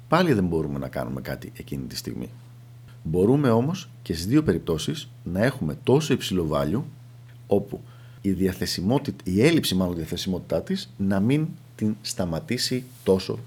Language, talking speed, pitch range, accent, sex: Greek, 145 wpm, 90-125 Hz, native, male